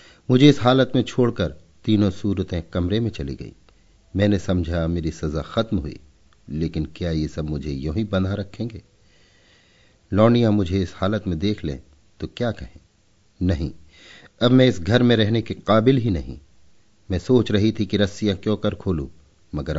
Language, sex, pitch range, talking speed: Hindi, male, 85-110 Hz, 170 wpm